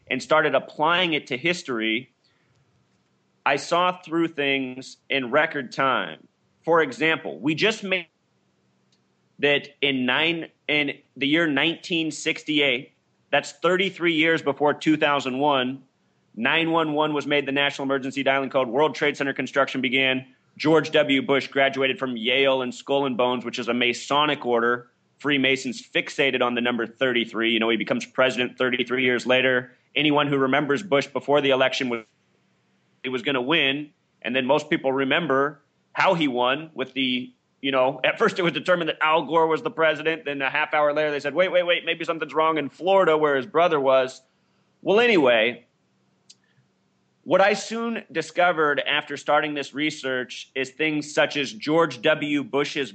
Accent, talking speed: American, 165 wpm